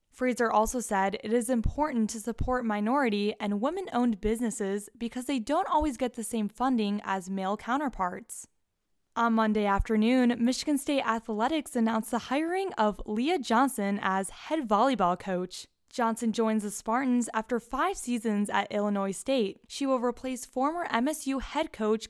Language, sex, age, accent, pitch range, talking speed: English, female, 10-29, American, 210-270 Hz, 150 wpm